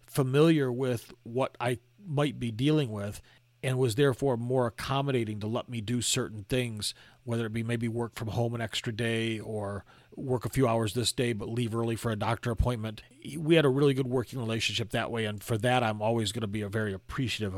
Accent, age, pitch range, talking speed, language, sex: American, 40-59, 115-135 Hz, 215 wpm, English, male